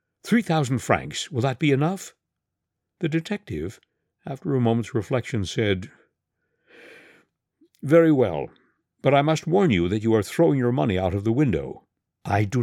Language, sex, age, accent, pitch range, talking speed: English, male, 60-79, American, 100-155 Hz, 155 wpm